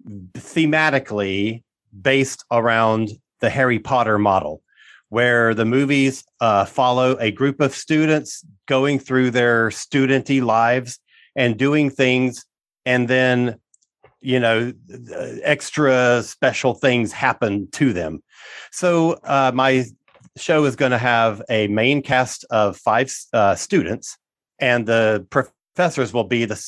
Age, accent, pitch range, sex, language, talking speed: 40-59, American, 110-135 Hz, male, English, 125 wpm